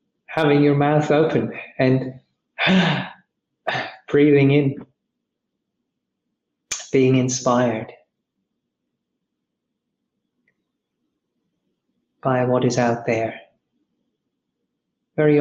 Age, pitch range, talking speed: 30-49, 125-145 Hz, 60 wpm